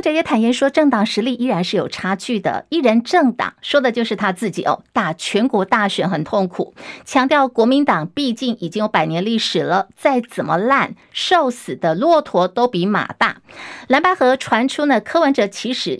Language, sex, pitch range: Chinese, female, 205-280 Hz